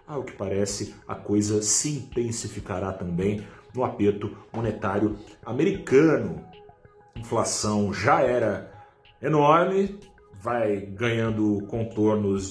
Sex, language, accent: male, Portuguese, Brazilian